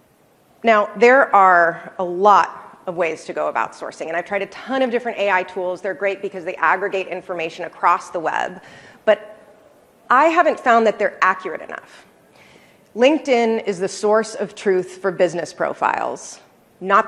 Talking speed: 165 wpm